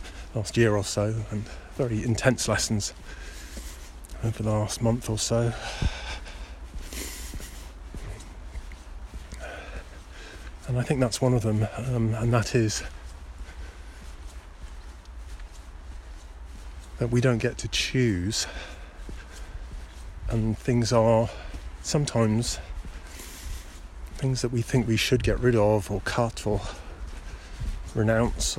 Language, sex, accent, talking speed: English, male, British, 100 wpm